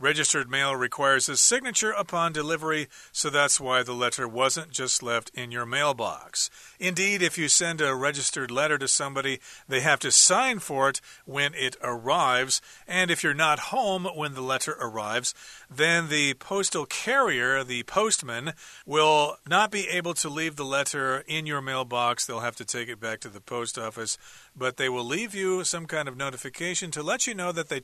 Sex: male